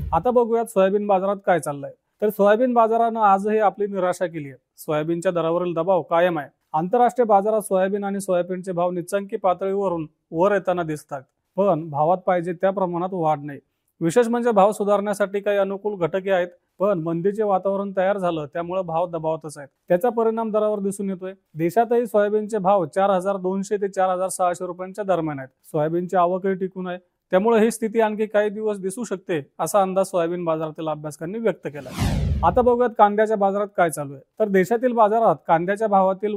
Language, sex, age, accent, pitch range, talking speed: Marathi, male, 30-49, native, 175-205 Hz, 165 wpm